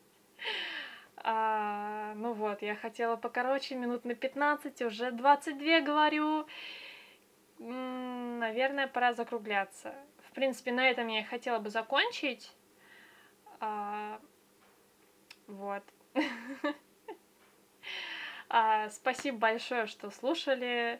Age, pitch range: 20-39, 230-285 Hz